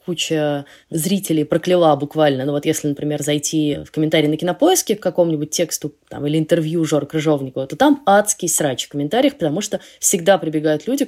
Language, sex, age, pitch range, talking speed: Russian, female, 20-39, 155-200 Hz, 170 wpm